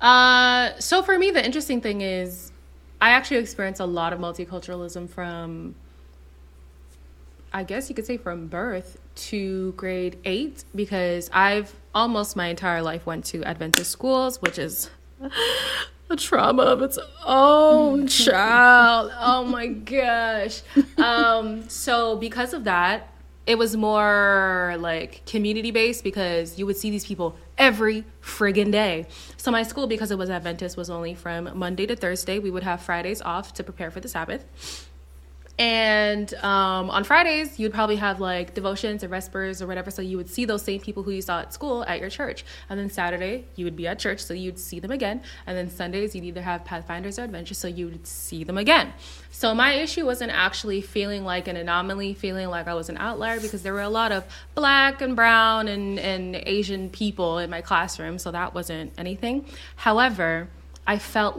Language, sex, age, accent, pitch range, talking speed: English, female, 20-39, American, 175-230 Hz, 180 wpm